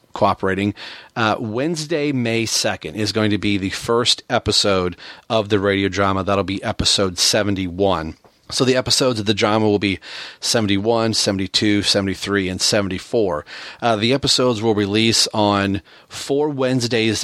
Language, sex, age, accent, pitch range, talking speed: English, male, 30-49, American, 100-115 Hz, 145 wpm